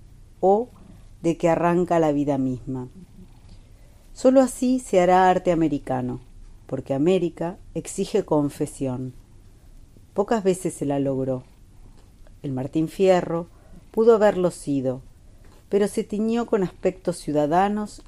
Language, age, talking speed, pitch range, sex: Spanish, 40-59, 115 wpm, 125-185 Hz, female